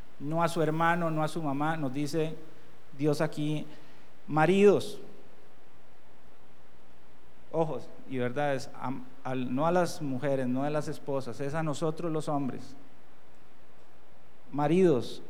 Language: Spanish